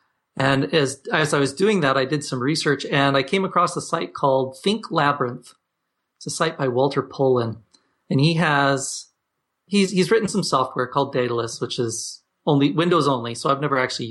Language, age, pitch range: English, 30-49, 120-150 Hz